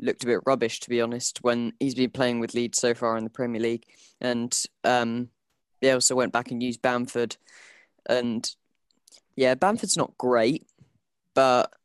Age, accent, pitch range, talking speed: 10-29, British, 120-140 Hz, 170 wpm